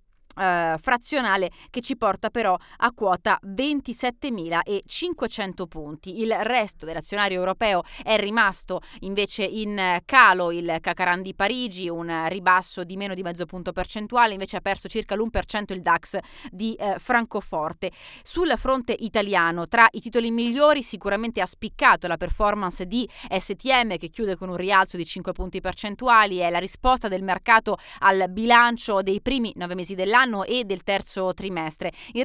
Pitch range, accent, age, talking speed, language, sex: 180-230 Hz, native, 30-49, 155 wpm, Italian, female